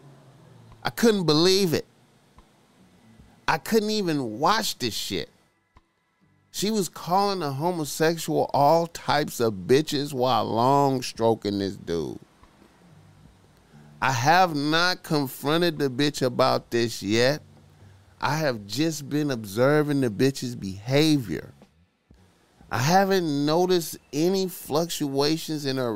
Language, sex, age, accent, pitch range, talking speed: English, male, 30-49, American, 110-160 Hz, 110 wpm